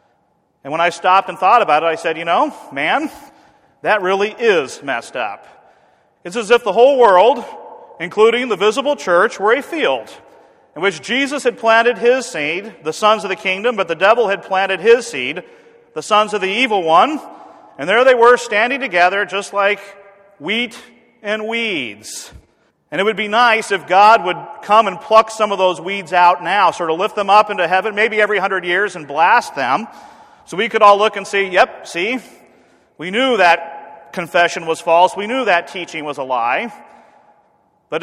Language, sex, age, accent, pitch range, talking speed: English, male, 40-59, American, 175-225 Hz, 190 wpm